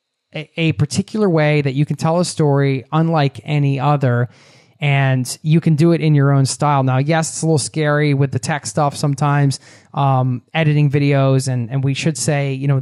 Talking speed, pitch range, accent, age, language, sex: 195 wpm, 135-160 Hz, American, 20-39, English, male